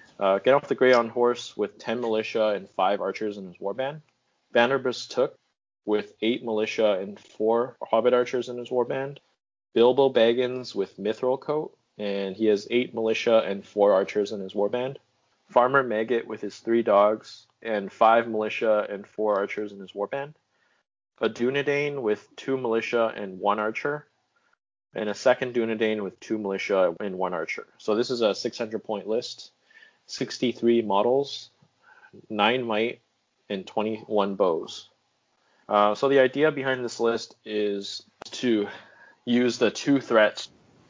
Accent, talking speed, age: American, 150 wpm, 30-49